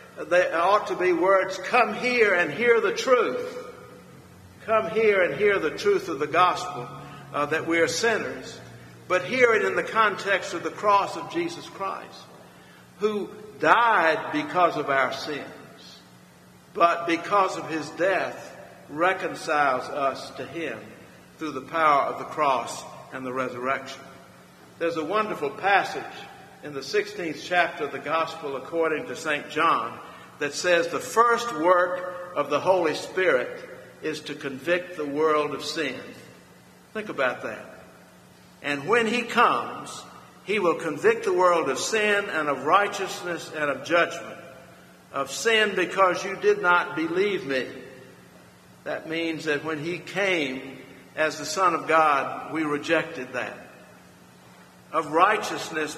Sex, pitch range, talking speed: male, 155-210 Hz, 145 wpm